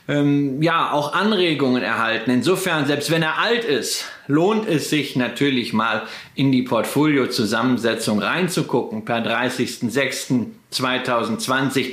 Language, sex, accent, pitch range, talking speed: German, male, German, 130-175 Hz, 110 wpm